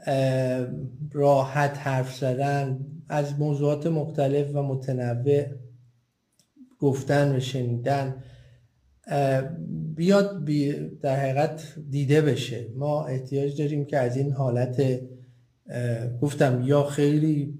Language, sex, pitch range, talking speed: Persian, male, 125-150 Hz, 90 wpm